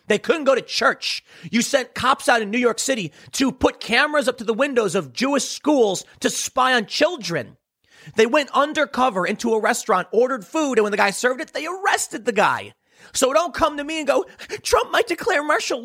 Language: English